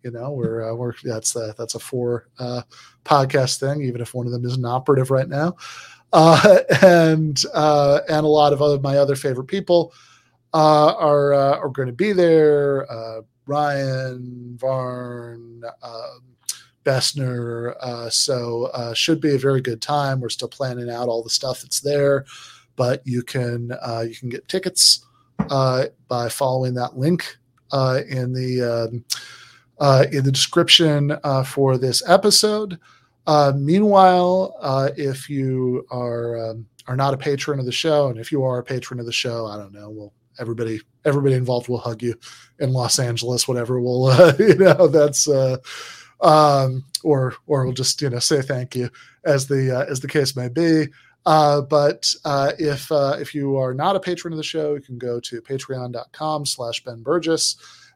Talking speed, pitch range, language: 175 wpm, 125-145 Hz, English